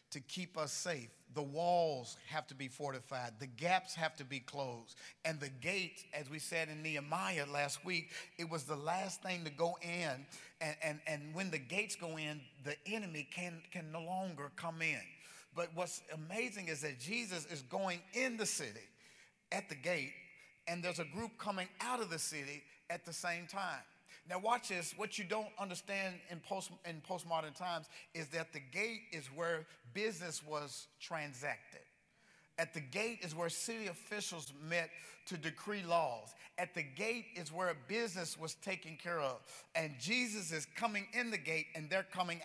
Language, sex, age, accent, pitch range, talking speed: English, male, 50-69, American, 160-220 Hz, 180 wpm